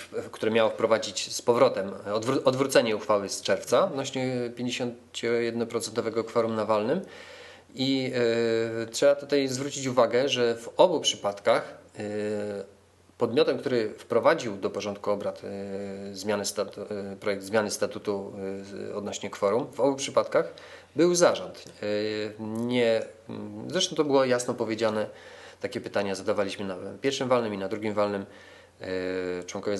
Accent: native